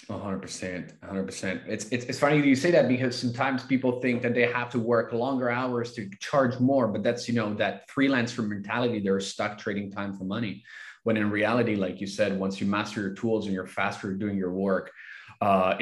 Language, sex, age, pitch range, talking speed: English, male, 20-39, 105-135 Hz, 210 wpm